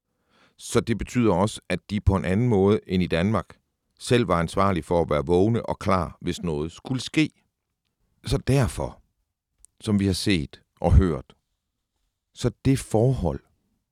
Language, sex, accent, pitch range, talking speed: Danish, male, native, 90-110 Hz, 160 wpm